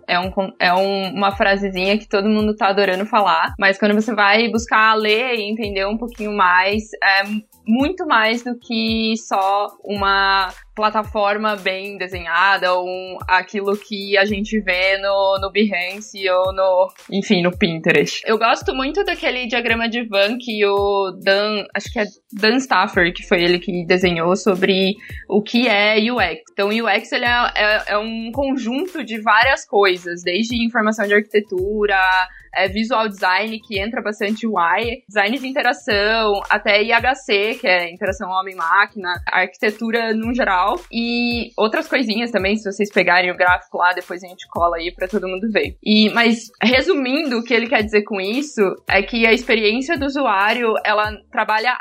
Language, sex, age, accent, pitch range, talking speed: Portuguese, female, 20-39, Brazilian, 195-230 Hz, 165 wpm